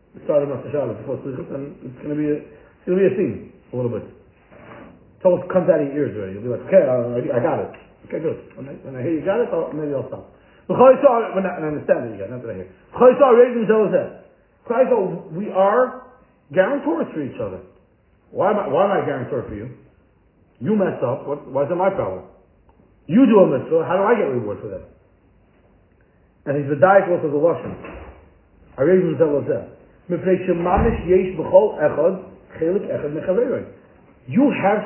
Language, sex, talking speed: English, male, 190 wpm